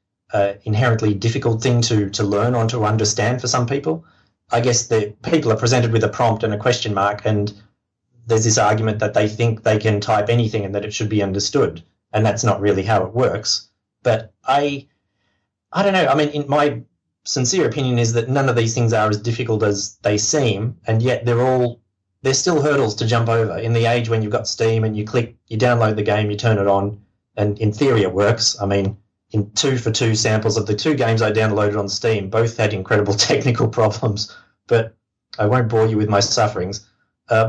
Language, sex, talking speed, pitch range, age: English, male, 220 wpm, 105-125 Hz, 30-49